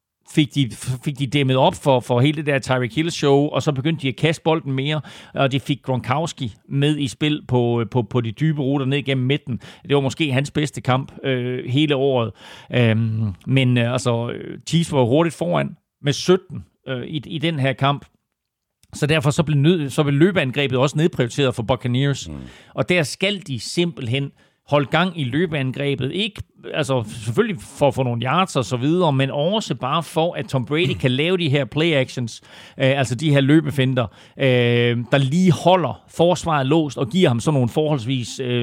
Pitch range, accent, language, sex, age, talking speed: 130-155 Hz, native, Danish, male, 40-59, 190 wpm